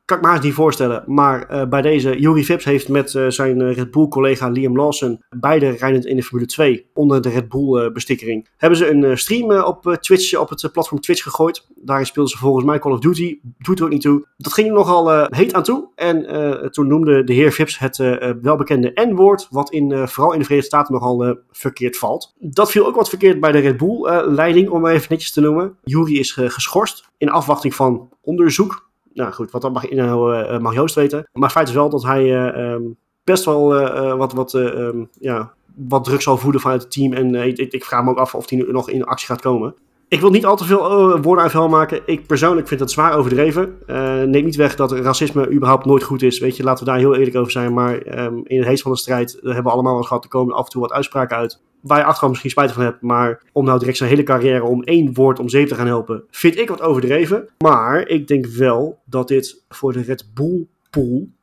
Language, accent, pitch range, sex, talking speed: Dutch, Dutch, 125-155 Hz, male, 250 wpm